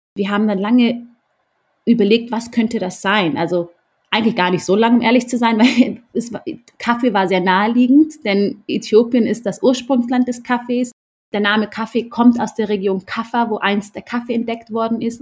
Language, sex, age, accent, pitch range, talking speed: German, female, 30-49, German, 190-235 Hz, 190 wpm